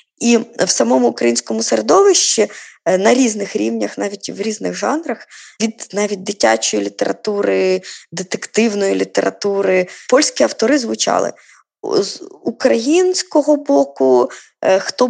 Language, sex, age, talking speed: Ukrainian, female, 20-39, 100 wpm